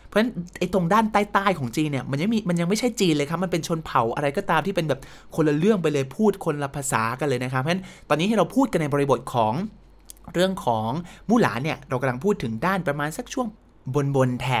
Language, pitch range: Thai, 130-180 Hz